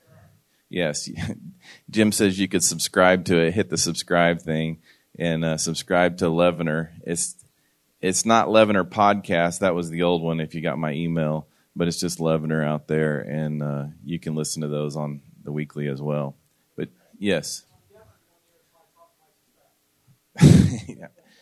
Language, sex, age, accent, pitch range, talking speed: English, male, 30-49, American, 80-95 Hz, 150 wpm